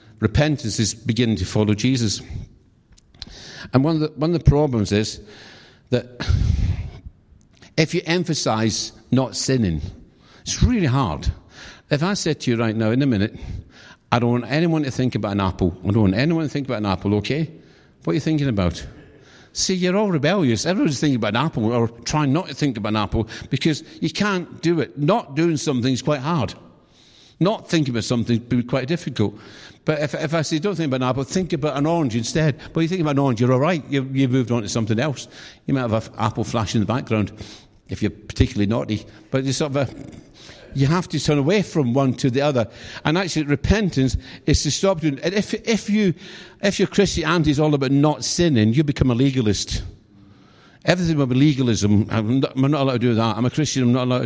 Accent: British